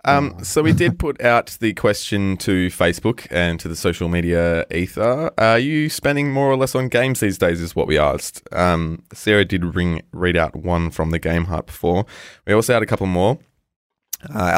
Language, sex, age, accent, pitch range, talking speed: English, male, 20-39, Australian, 85-110 Hz, 200 wpm